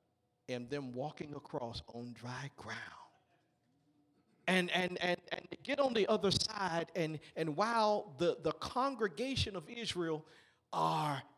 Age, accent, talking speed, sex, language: 50-69, American, 130 wpm, male, English